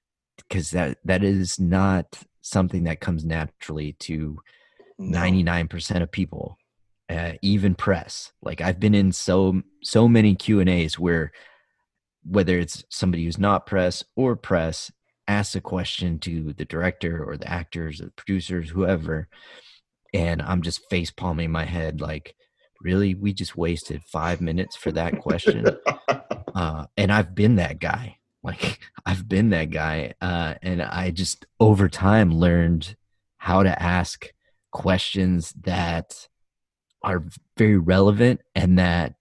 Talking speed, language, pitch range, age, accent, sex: 145 wpm, English, 85-95 Hz, 30-49, American, male